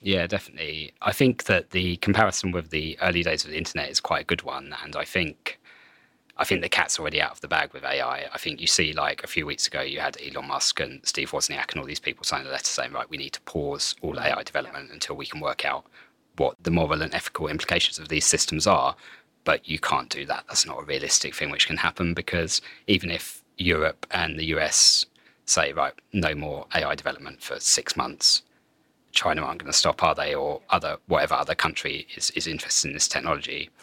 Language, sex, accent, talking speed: English, male, British, 225 wpm